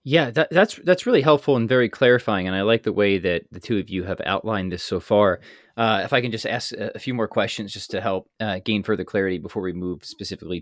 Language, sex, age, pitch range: English, male, 20-39, 95-140 Hz